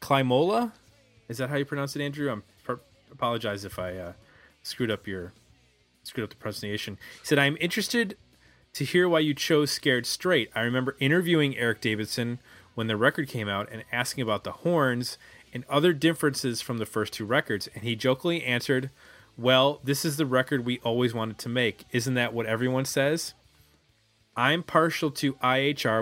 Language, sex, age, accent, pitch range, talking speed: English, male, 30-49, American, 105-145 Hz, 180 wpm